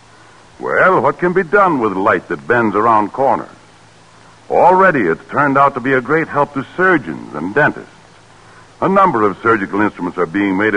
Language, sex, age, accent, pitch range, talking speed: English, female, 60-79, American, 110-155 Hz, 180 wpm